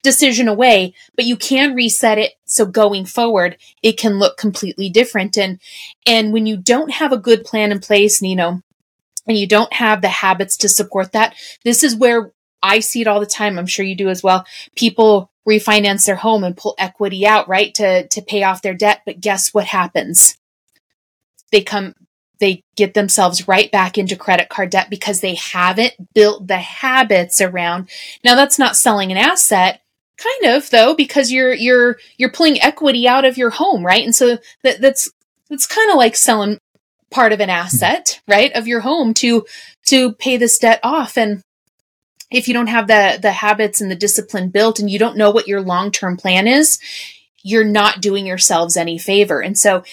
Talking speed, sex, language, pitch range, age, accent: 190 wpm, female, English, 195-235 Hz, 30-49, American